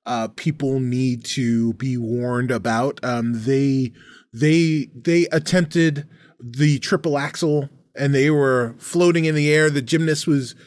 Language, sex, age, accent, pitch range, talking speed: English, male, 20-39, American, 125-165 Hz, 140 wpm